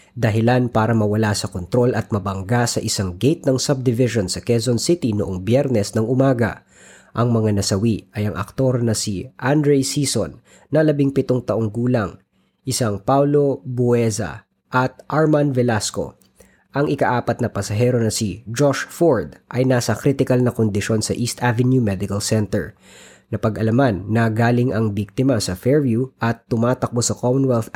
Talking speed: 150 wpm